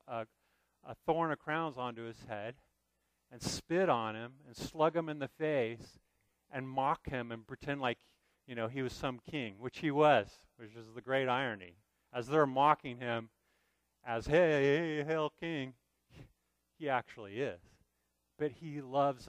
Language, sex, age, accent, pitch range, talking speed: English, male, 40-59, American, 100-150 Hz, 160 wpm